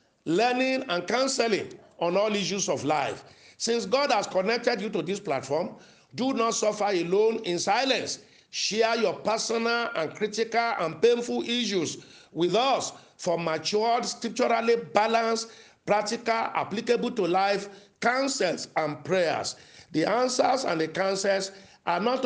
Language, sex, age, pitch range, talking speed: English, male, 50-69, 180-240 Hz, 135 wpm